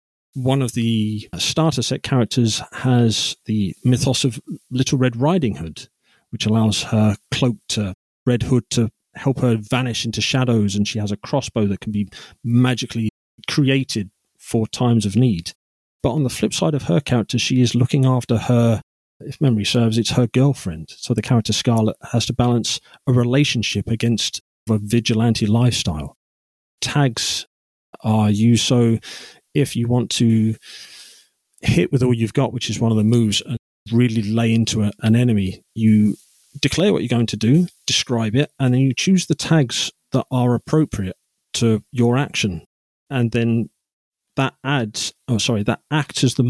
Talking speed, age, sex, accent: 170 wpm, 40-59, male, British